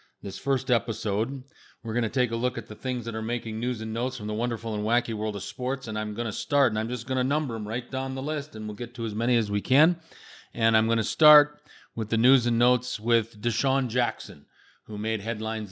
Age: 40-59